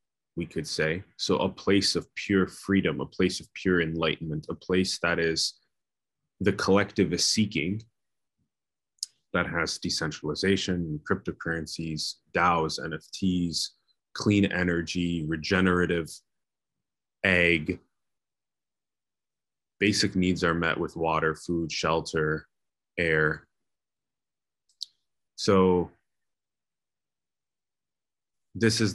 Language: English